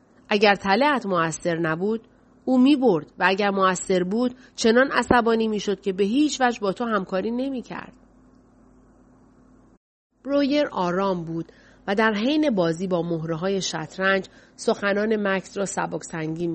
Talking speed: 140 wpm